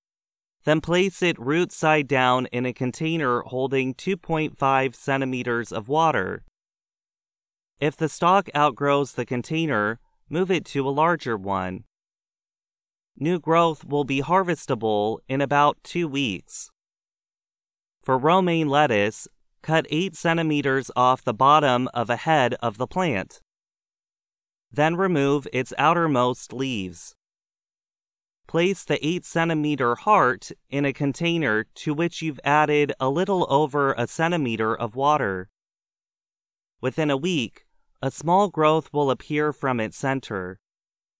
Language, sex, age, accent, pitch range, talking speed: English, male, 30-49, American, 125-160 Hz, 120 wpm